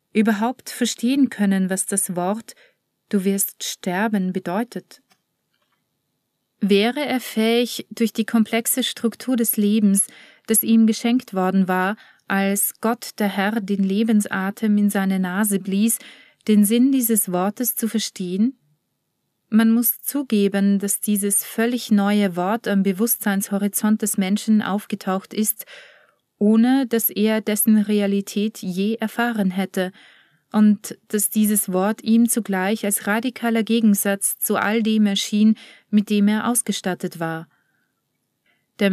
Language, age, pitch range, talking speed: German, 30-49, 195-225 Hz, 125 wpm